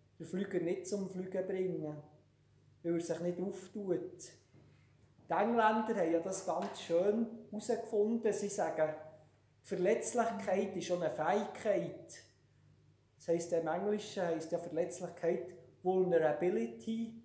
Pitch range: 150-200 Hz